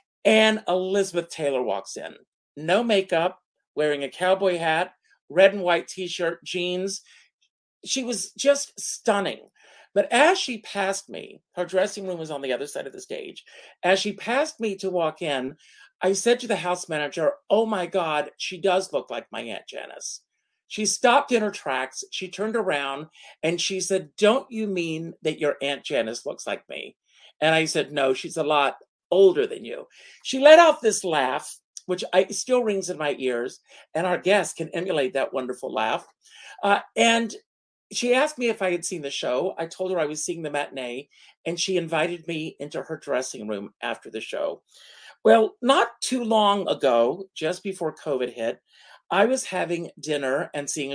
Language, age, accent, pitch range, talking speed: English, 50-69, American, 155-210 Hz, 185 wpm